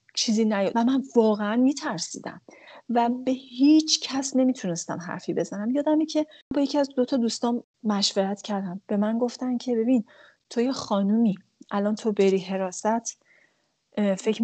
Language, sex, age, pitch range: Persian, female, 30-49, 190-245 Hz